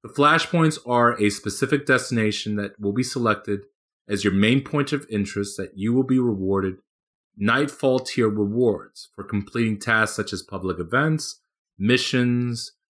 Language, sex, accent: English, male, American